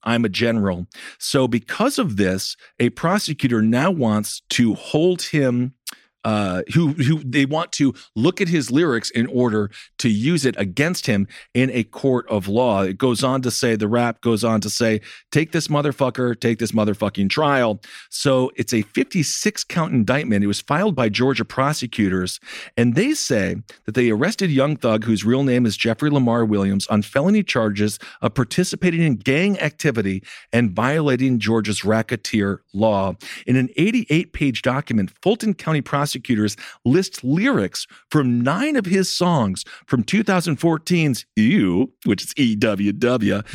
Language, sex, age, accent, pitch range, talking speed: English, male, 40-59, American, 110-150 Hz, 160 wpm